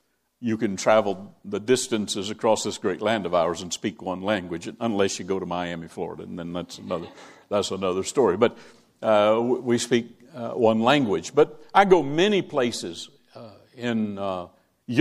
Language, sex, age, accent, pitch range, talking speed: English, male, 60-79, American, 105-130 Hz, 170 wpm